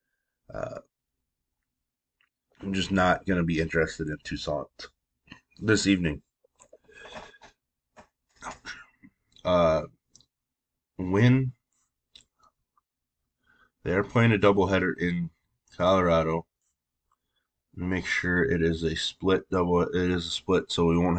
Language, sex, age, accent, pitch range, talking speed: English, male, 30-49, American, 85-100 Hz, 95 wpm